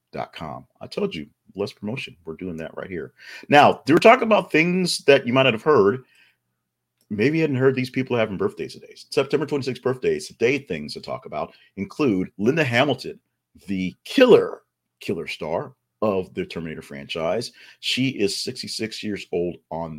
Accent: American